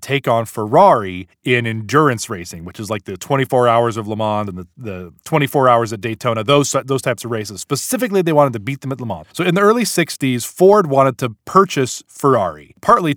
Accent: American